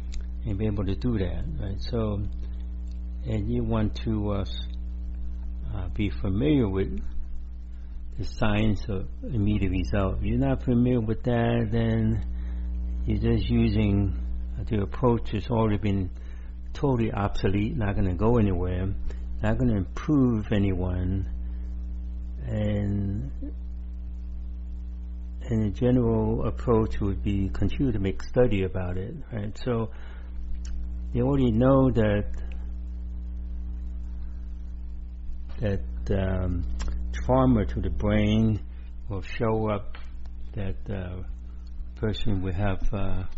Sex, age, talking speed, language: male, 60-79, 115 wpm, English